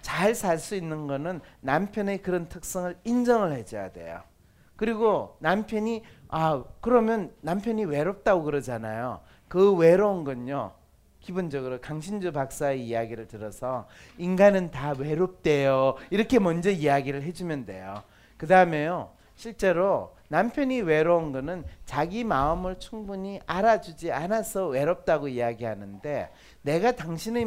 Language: Korean